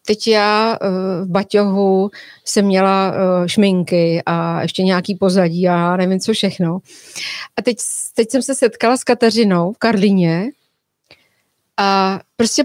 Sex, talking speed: female, 130 wpm